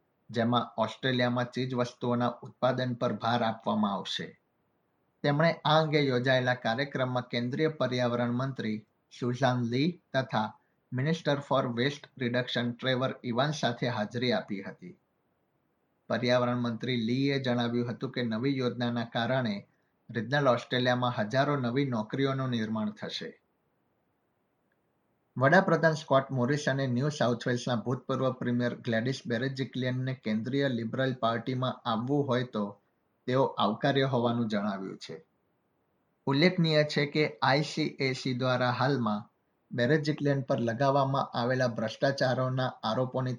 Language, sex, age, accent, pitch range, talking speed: Gujarati, male, 50-69, native, 120-135 Hz, 105 wpm